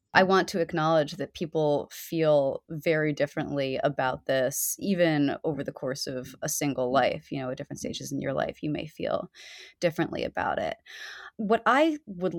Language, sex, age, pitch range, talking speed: English, female, 20-39, 150-190 Hz, 175 wpm